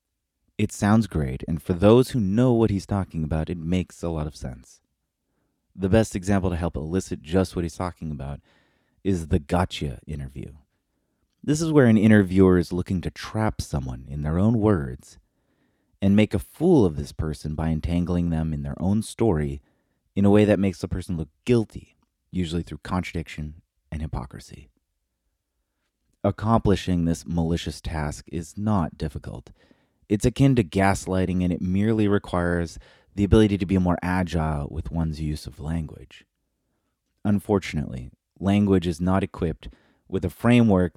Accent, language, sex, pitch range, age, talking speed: American, English, male, 80-100 Hz, 30-49, 160 wpm